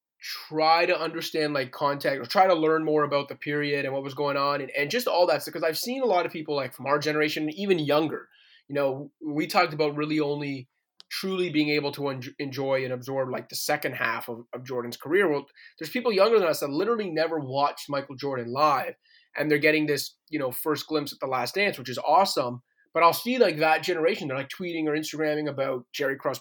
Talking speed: 225 wpm